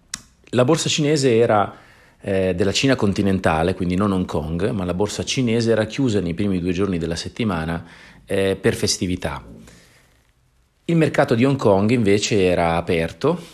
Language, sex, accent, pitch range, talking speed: Italian, male, native, 90-115 Hz, 155 wpm